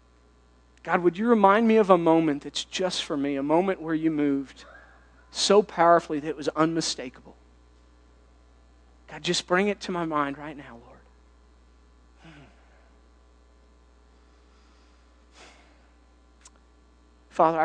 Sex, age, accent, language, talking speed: male, 40-59, American, English, 120 wpm